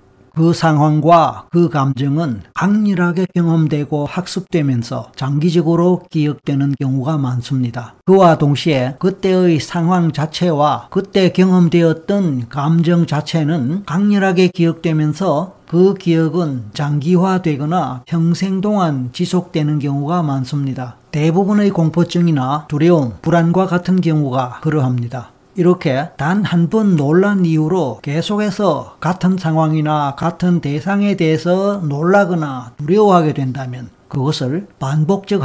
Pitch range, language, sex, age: 145-185 Hz, Korean, male, 40-59